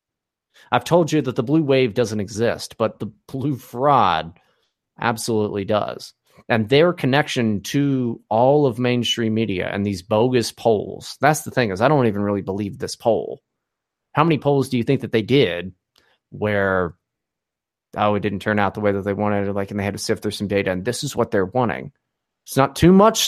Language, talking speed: English, 200 wpm